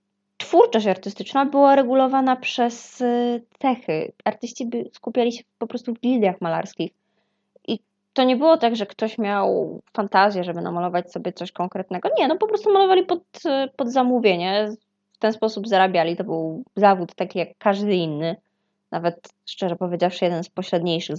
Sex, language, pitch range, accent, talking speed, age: female, Polish, 185-245 Hz, native, 150 wpm, 20-39